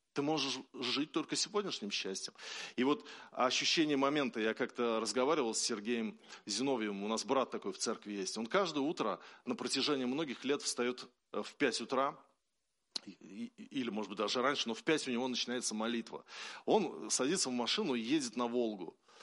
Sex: male